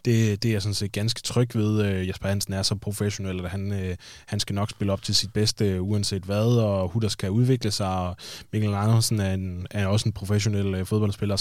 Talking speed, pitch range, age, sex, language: 220 wpm, 95-115 Hz, 20-39, male, Danish